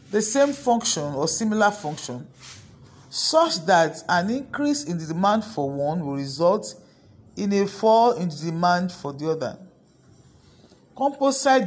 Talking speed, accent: 140 wpm, Nigerian